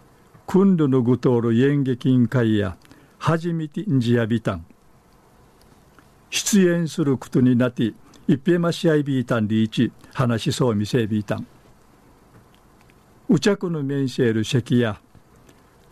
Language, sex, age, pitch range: Japanese, male, 50-69, 130-165 Hz